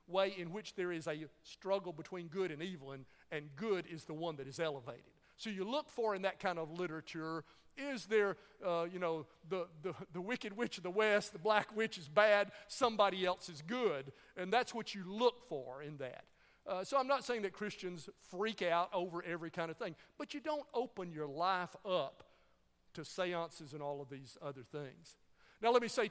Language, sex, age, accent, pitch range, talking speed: English, male, 50-69, American, 170-230 Hz, 210 wpm